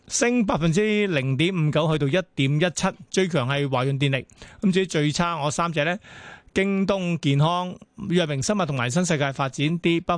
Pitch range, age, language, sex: 140-180 Hz, 30-49, Chinese, male